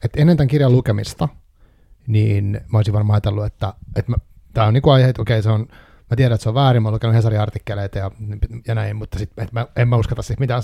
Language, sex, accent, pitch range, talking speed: Finnish, male, native, 105-125 Hz, 230 wpm